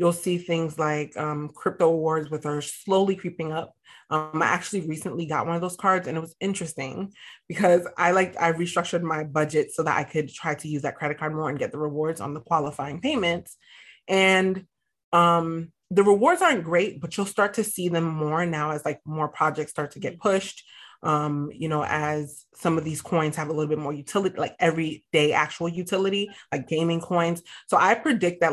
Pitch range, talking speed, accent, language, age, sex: 150-175 Hz, 205 wpm, American, English, 30-49, female